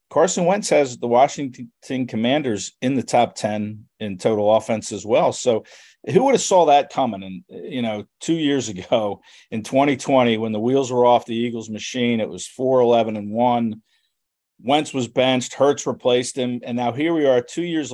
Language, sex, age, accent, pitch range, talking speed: English, male, 50-69, American, 110-130 Hz, 190 wpm